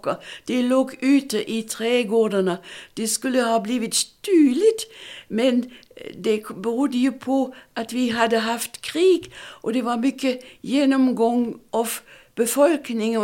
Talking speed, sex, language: 120 wpm, female, Swedish